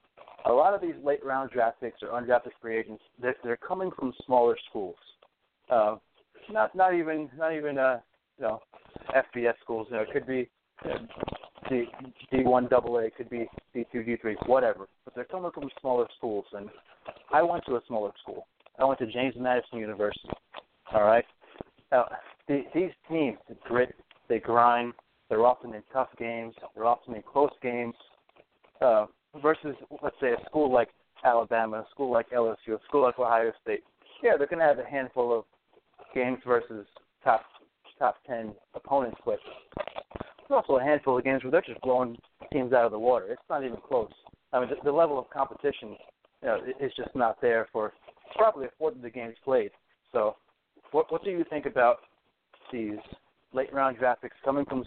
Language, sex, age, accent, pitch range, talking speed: English, male, 30-49, American, 115-140 Hz, 190 wpm